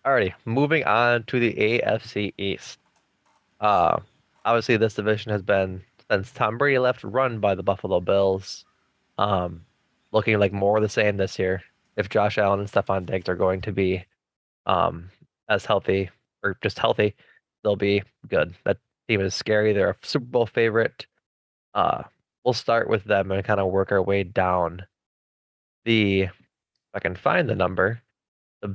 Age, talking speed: 20-39, 165 wpm